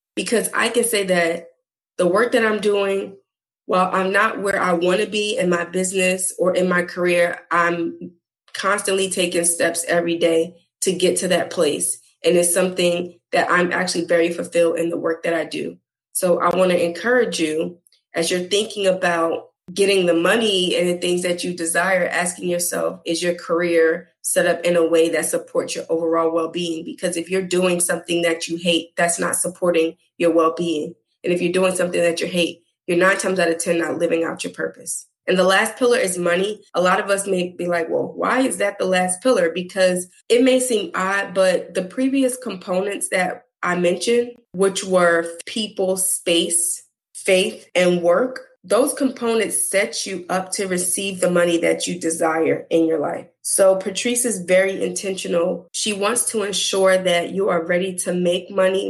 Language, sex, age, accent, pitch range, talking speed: English, female, 20-39, American, 170-195 Hz, 190 wpm